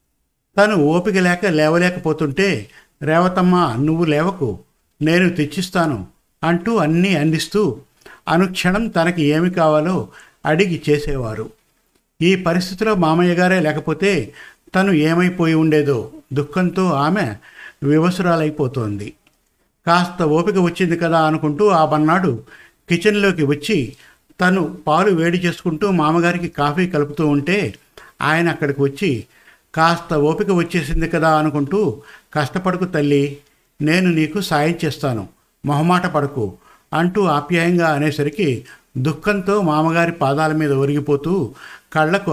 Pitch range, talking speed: 150-175 Hz, 100 wpm